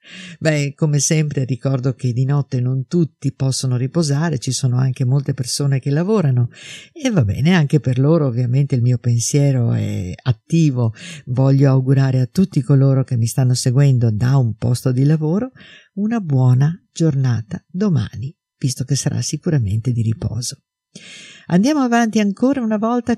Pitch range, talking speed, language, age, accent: 130-175 Hz, 155 wpm, Italian, 50-69, native